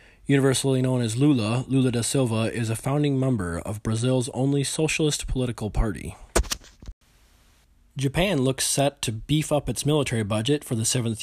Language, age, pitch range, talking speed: English, 20-39, 110-130 Hz, 155 wpm